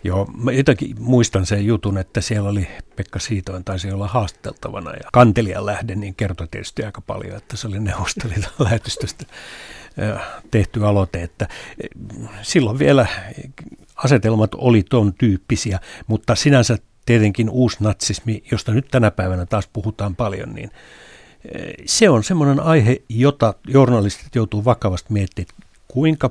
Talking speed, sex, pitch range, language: 135 wpm, male, 100-125 Hz, Finnish